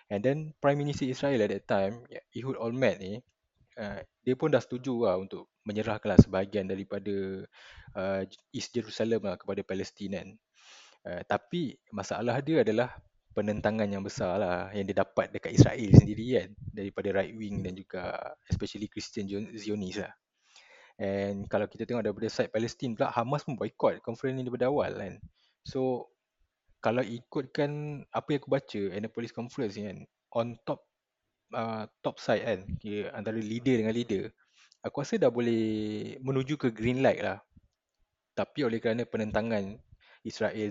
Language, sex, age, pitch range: Malay, male, 20-39, 100-125 Hz